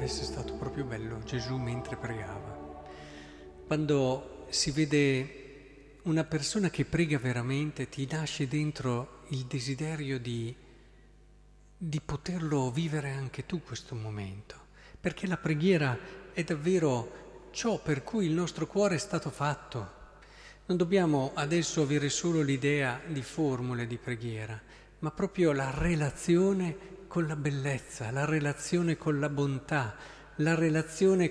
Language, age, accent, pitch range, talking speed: Italian, 50-69, native, 130-175 Hz, 125 wpm